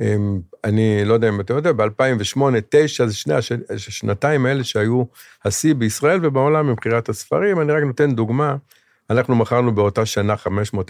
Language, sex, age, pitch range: Hebrew, male, 50-69, 100-125 Hz